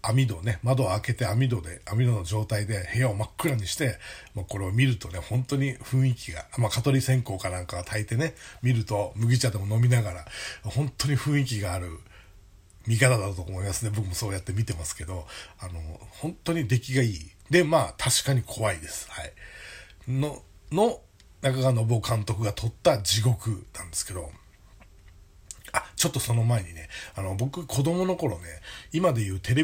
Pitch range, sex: 95-125 Hz, male